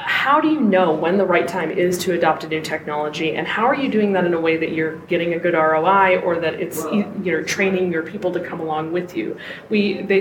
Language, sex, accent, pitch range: English, female, American, 170-200 Hz